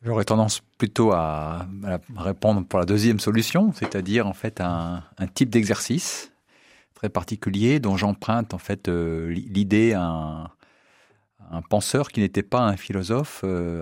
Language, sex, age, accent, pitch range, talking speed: French, male, 40-59, French, 85-105 Hz, 135 wpm